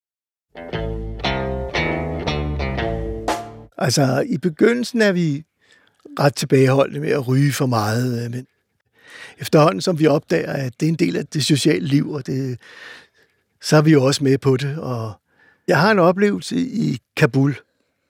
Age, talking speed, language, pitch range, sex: 60-79, 145 wpm, Danish, 135-175 Hz, male